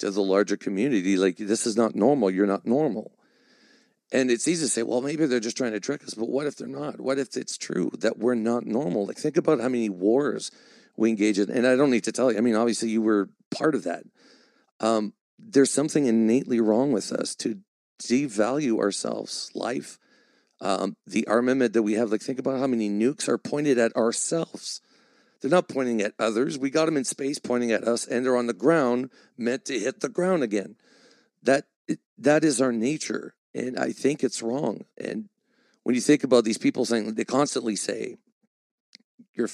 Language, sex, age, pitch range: English, male, 50-69, 115-150 Hz